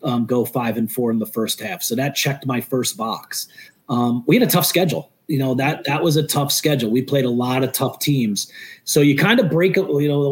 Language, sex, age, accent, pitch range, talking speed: English, male, 30-49, American, 135-155 Hz, 260 wpm